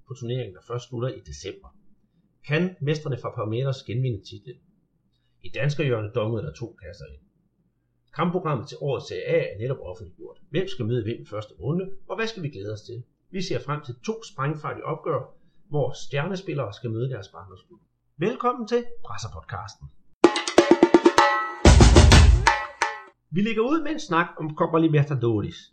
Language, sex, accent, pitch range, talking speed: Danish, male, native, 120-165 Hz, 145 wpm